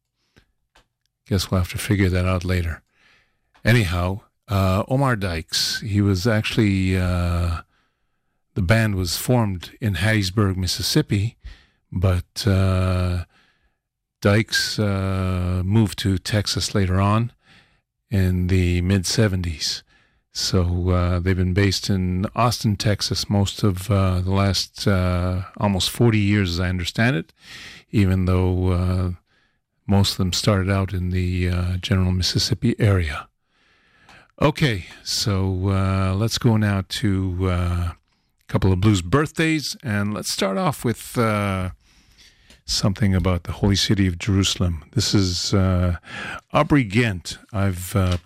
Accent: American